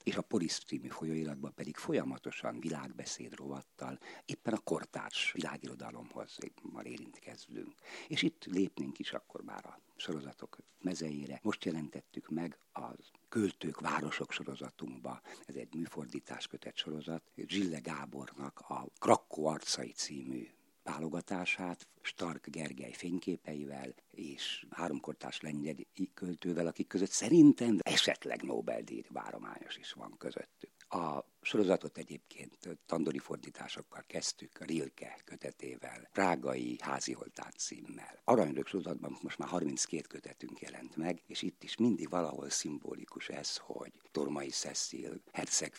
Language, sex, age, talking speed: Hungarian, male, 50-69, 120 wpm